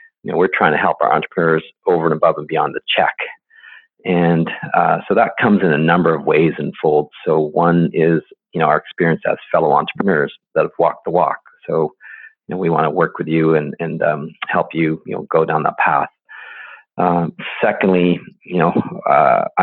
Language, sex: English, male